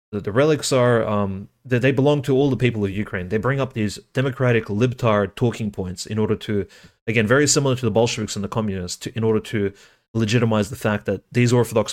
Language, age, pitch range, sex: English, 30-49, 105-125 Hz, male